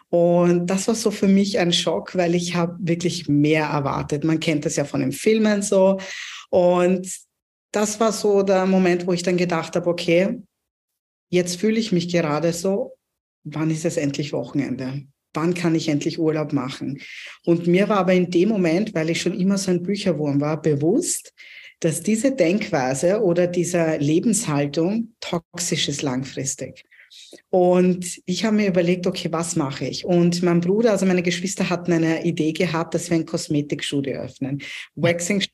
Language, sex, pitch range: German, female, 155-185 Hz